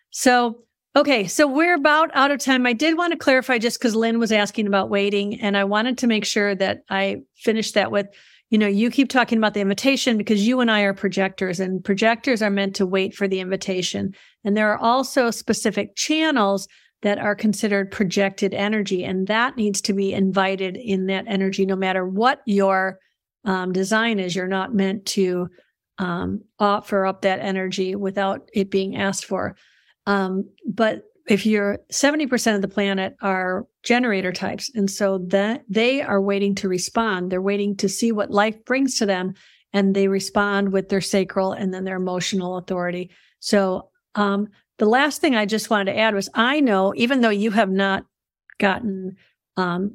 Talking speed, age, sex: 185 wpm, 50-69, female